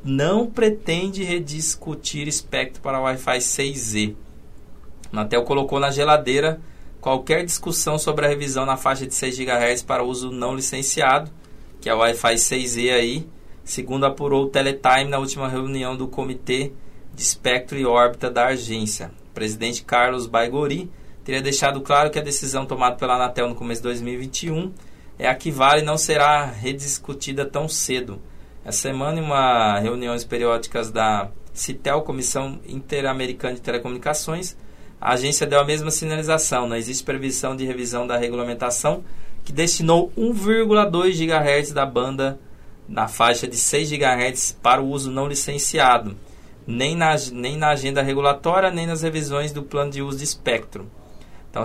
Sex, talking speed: male, 150 wpm